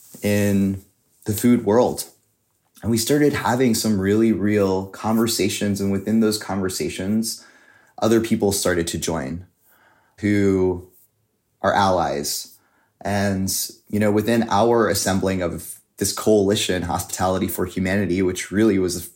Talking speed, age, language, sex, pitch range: 125 wpm, 20-39, English, male, 95-110 Hz